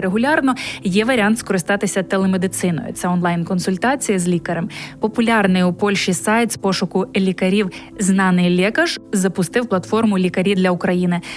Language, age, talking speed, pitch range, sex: Polish, 20-39, 120 wpm, 185-220 Hz, female